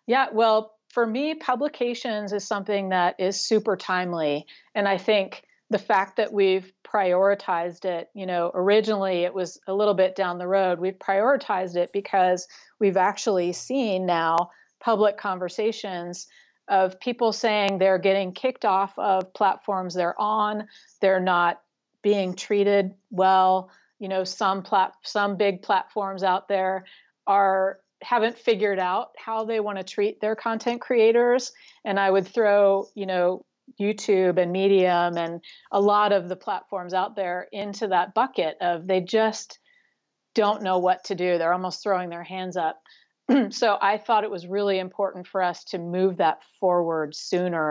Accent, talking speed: American, 155 wpm